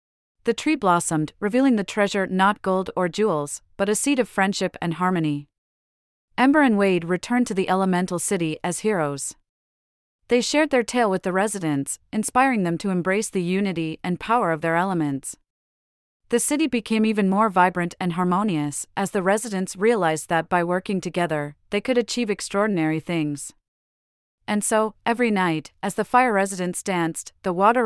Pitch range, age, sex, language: 170-210 Hz, 30-49, female, English